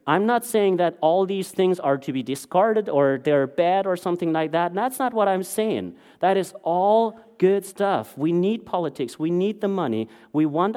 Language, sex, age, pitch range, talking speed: English, male, 40-59, 145-195 Hz, 205 wpm